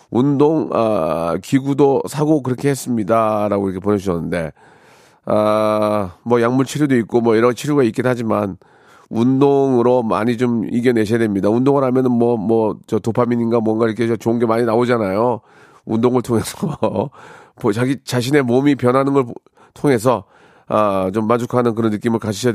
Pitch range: 110-145 Hz